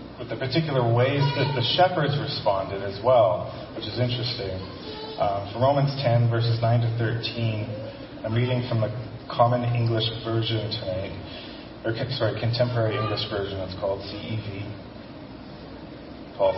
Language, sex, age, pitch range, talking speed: English, male, 30-49, 115-145 Hz, 140 wpm